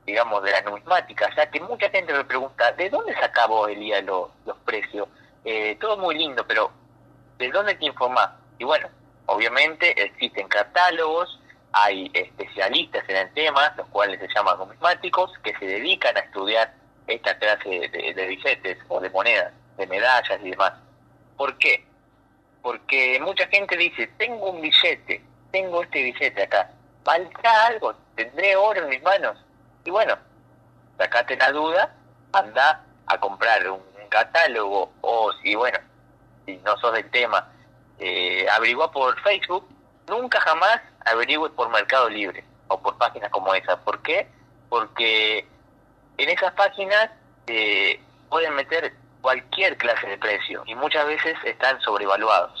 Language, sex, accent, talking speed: Spanish, male, Argentinian, 155 wpm